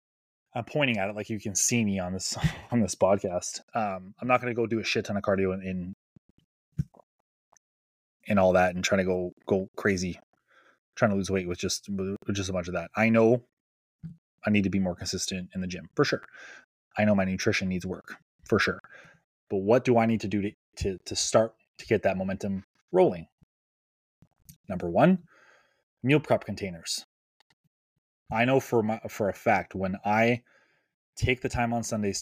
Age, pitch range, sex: 20-39, 95-115 Hz, male